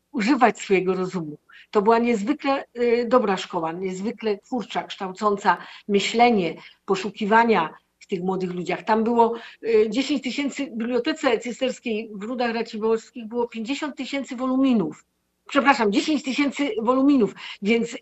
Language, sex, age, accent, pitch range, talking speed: Polish, female, 50-69, native, 195-240 Hz, 125 wpm